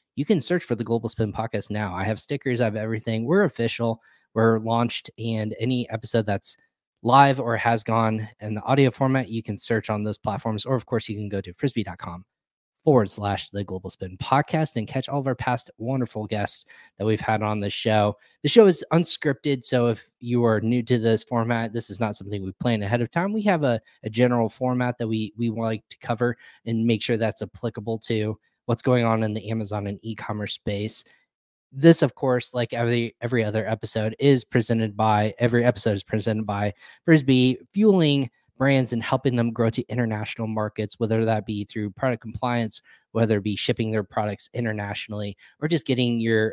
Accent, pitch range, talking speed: American, 110-125 Hz, 200 wpm